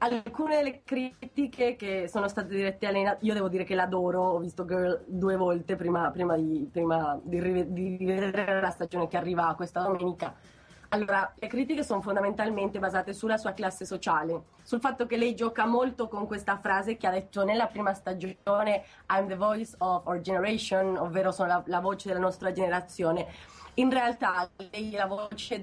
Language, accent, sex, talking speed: Italian, native, female, 180 wpm